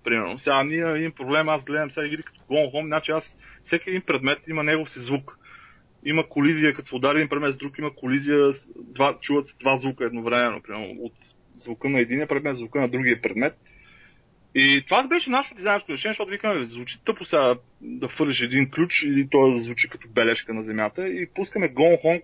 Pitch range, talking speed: 130-165 Hz, 210 wpm